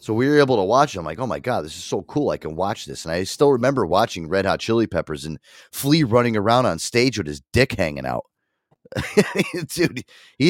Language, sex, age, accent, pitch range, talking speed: English, male, 30-49, American, 95-135 Hz, 240 wpm